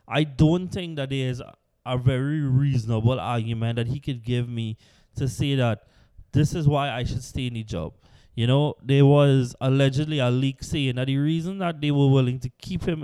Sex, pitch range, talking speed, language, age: male, 120-145 Hz, 205 wpm, English, 20-39